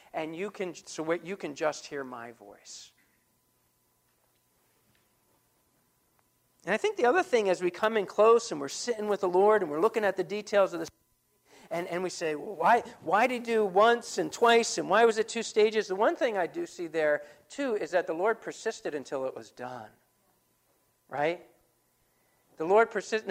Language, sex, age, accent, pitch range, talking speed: English, male, 50-69, American, 195-275 Hz, 190 wpm